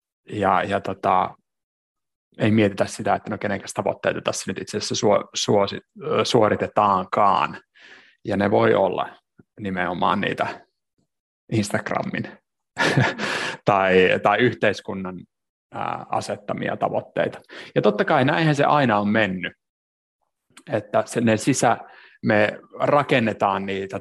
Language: Finnish